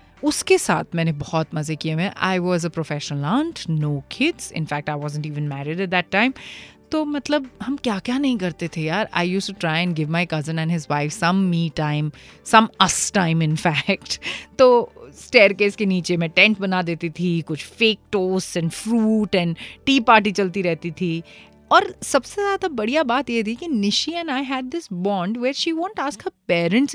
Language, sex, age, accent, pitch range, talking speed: Hindi, female, 30-49, native, 165-255 Hz, 205 wpm